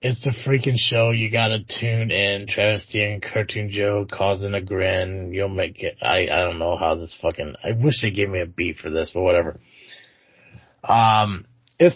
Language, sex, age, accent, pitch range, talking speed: English, male, 30-49, American, 105-130 Hz, 190 wpm